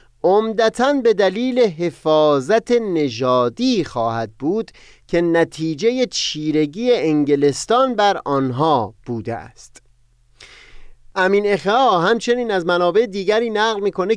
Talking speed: 95 wpm